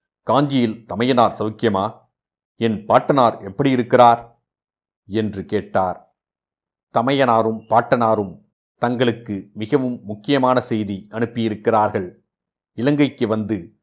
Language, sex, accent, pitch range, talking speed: Tamil, male, native, 105-120 Hz, 80 wpm